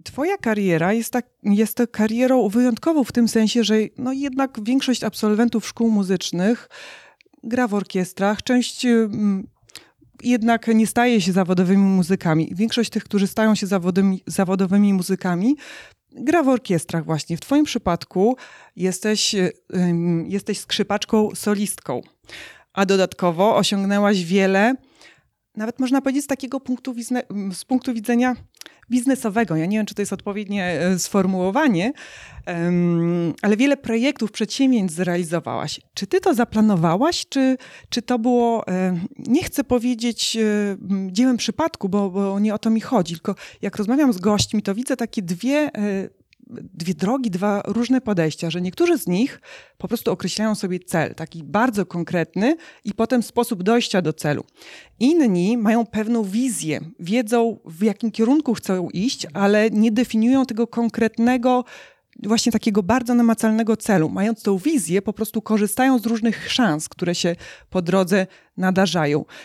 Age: 30-49